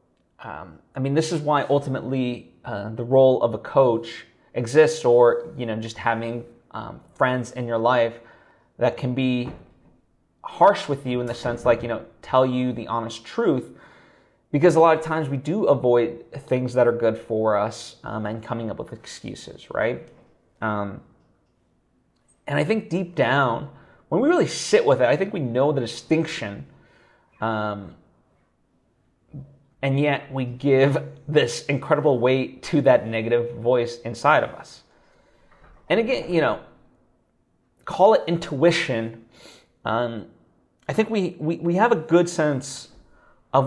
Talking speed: 155 wpm